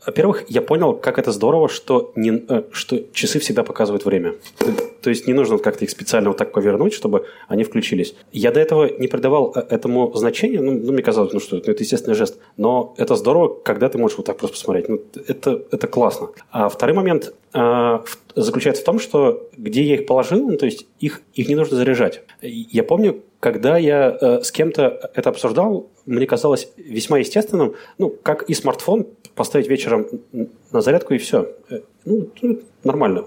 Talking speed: 180 wpm